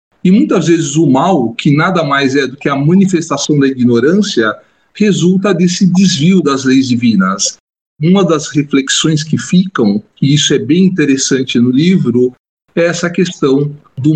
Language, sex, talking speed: Portuguese, male, 155 wpm